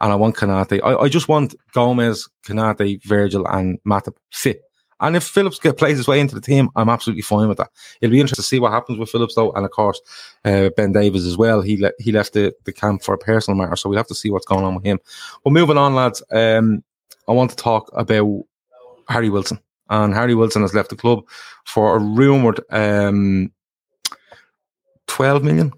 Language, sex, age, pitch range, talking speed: English, male, 20-39, 100-120 Hz, 220 wpm